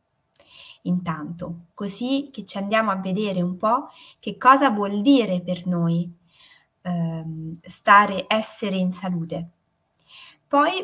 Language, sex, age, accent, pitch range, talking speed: Italian, female, 20-39, native, 175-235 Hz, 115 wpm